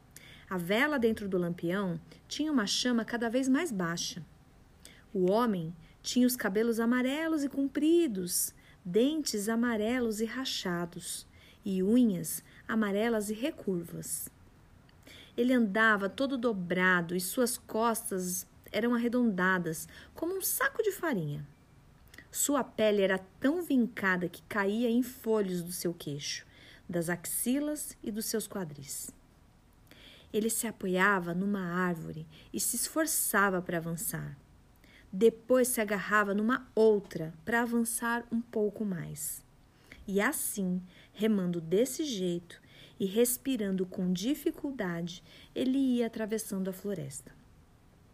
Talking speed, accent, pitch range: 120 wpm, Brazilian, 180-240 Hz